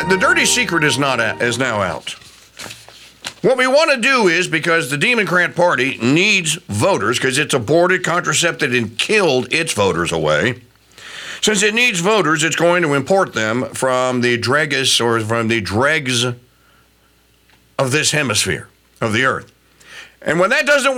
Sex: male